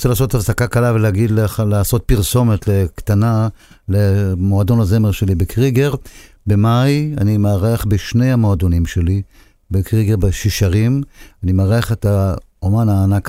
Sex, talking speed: male, 120 wpm